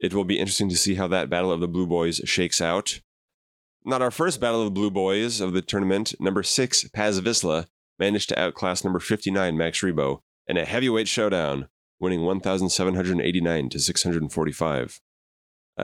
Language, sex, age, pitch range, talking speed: English, male, 30-49, 85-105 Hz, 170 wpm